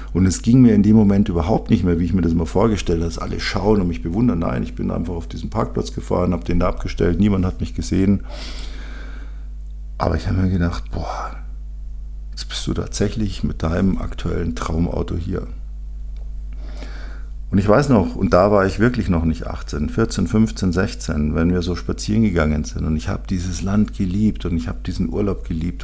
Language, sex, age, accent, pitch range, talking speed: German, male, 50-69, German, 80-100 Hz, 200 wpm